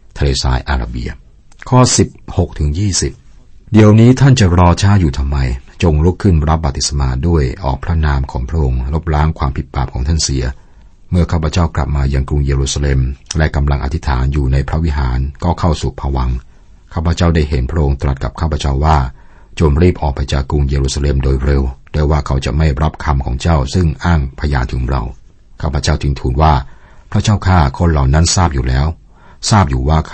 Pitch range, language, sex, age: 65-85 Hz, Thai, male, 60-79